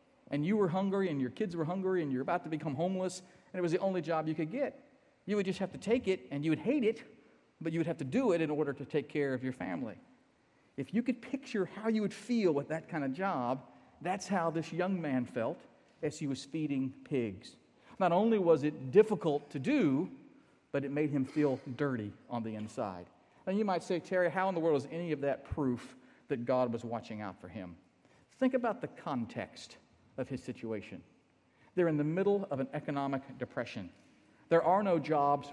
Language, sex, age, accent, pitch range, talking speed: English, male, 50-69, American, 135-180 Hz, 220 wpm